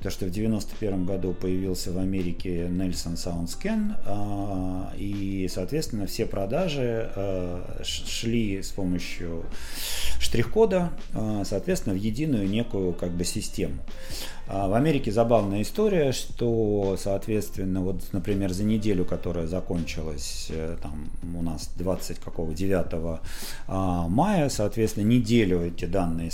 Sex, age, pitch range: male, 40-59, 90-120 Hz